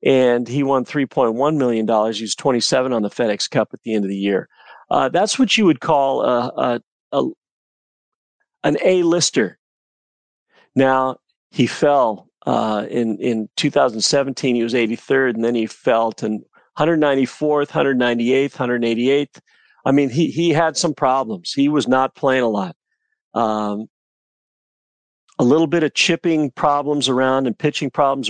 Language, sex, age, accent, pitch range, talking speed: English, male, 40-59, American, 120-155 Hz, 150 wpm